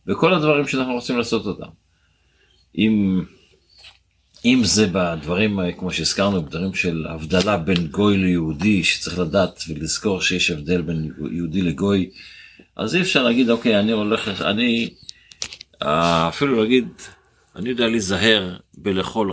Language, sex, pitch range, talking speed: Hebrew, male, 90-130 Hz, 125 wpm